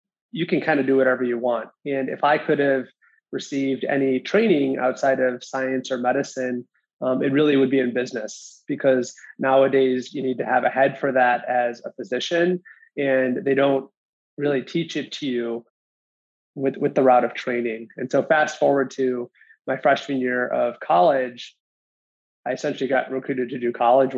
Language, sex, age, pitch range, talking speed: English, male, 20-39, 125-140 Hz, 180 wpm